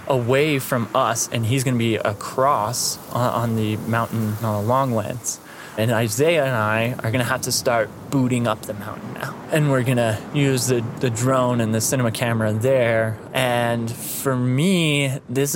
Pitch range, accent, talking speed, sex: 115-135 Hz, American, 180 wpm, male